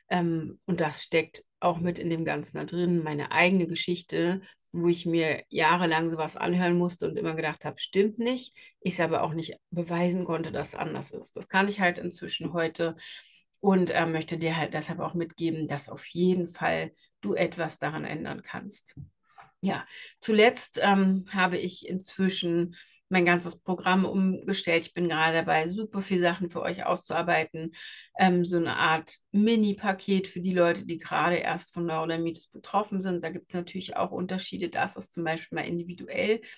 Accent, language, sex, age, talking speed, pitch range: German, German, female, 60-79, 175 wpm, 165-185 Hz